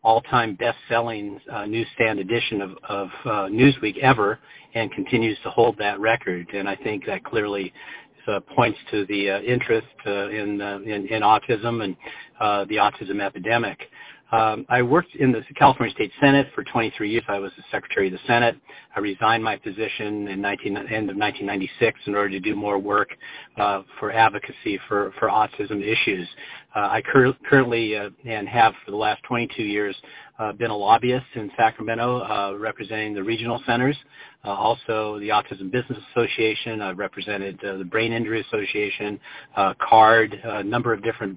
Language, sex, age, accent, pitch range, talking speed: English, male, 50-69, American, 100-115 Hz, 175 wpm